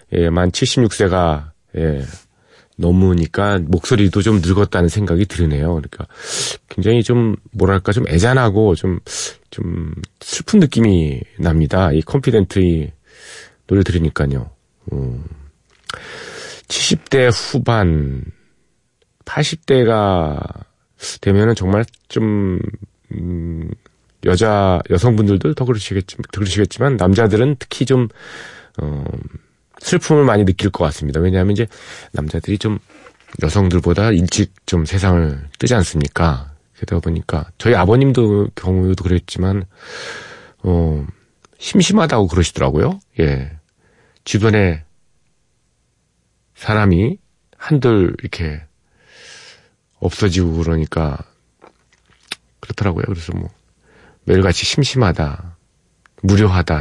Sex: male